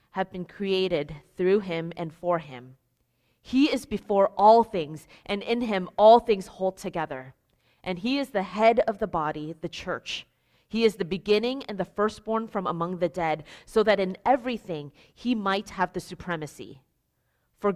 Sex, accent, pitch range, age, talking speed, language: female, American, 160-210 Hz, 30-49, 170 wpm, English